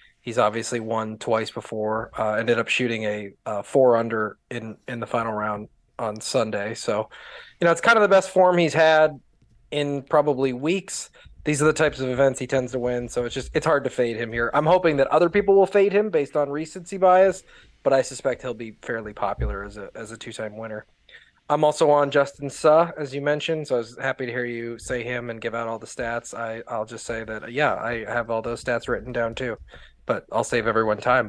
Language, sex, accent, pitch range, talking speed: English, male, American, 115-150 Hz, 230 wpm